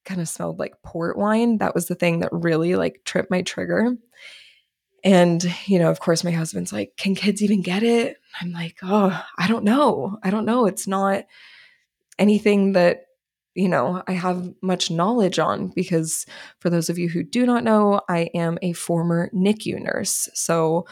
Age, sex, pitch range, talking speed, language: 20-39, female, 170-200 Hz, 185 wpm, English